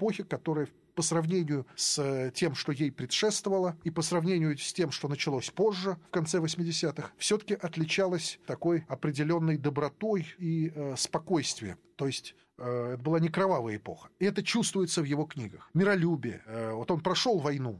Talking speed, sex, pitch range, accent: 155 wpm, male, 135-180 Hz, native